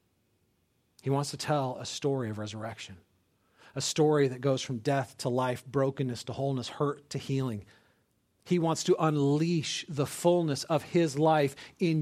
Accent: American